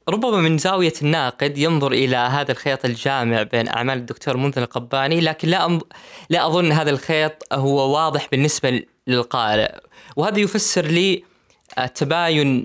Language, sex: Arabic, female